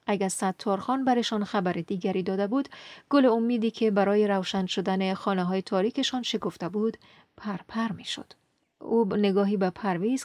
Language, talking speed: Persian, 145 wpm